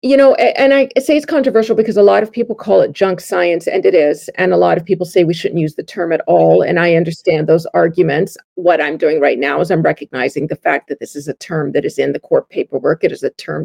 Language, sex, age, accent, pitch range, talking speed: English, female, 40-59, American, 175-240 Hz, 275 wpm